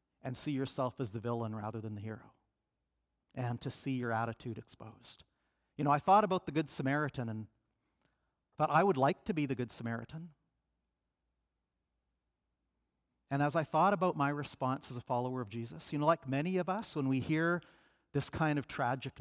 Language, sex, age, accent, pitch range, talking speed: English, male, 50-69, American, 105-140 Hz, 180 wpm